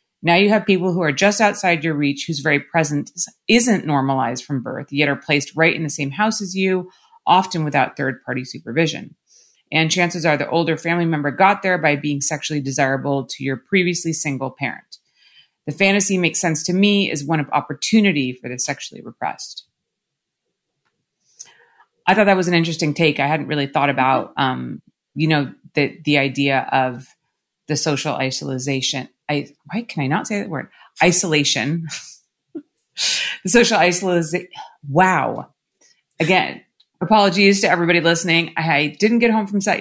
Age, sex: 30-49, female